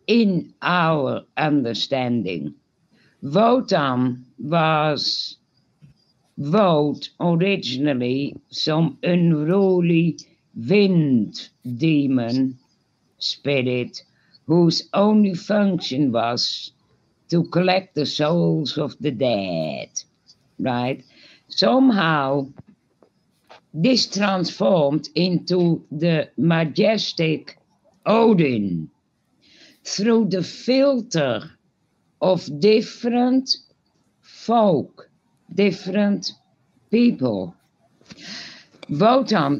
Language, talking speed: Italian, 60 wpm